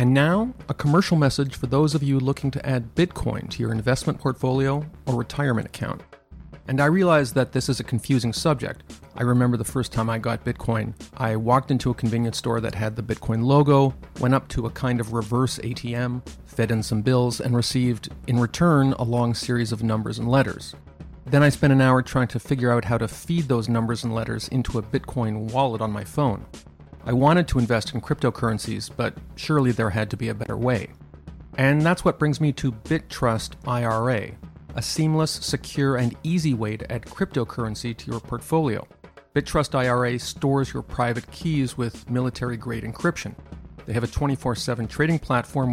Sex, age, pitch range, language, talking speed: male, 40-59, 115-140 Hz, English, 190 wpm